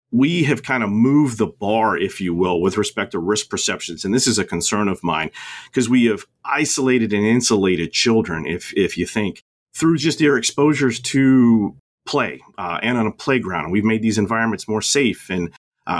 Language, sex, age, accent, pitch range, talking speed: English, male, 40-59, American, 100-130 Hz, 200 wpm